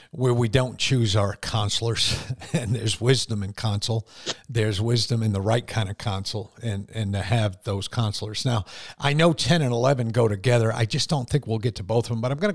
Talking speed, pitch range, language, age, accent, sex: 225 wpm, 105-125 Hz, English, 50-69, American, male